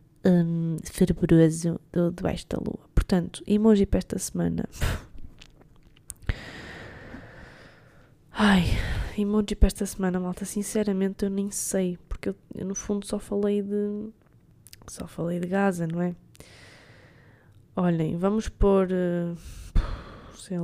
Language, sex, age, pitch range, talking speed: Portuguese, female, 20-39, 125-205 Hz, 115 wpm